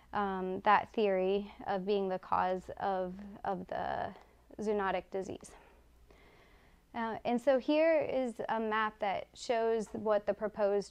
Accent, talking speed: American, 130 wpm